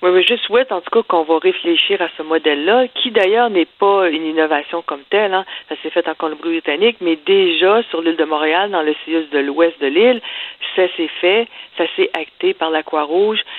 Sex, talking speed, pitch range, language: female, 215 wpm, 170-225 Hz, French